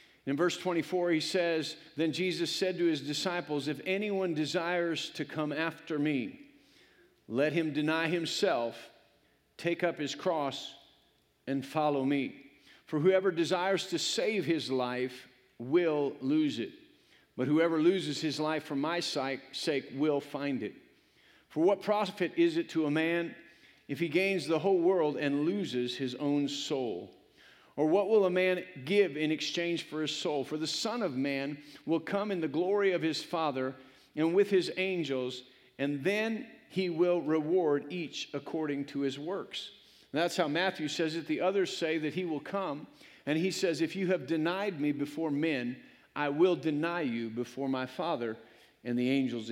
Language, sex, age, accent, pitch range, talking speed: English, male, 50-69, American, 140-180 Hz, 170 wpm